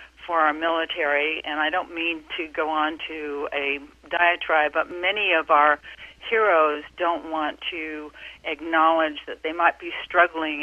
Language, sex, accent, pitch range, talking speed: English, female, American, 155-175 Hz, 150 wpm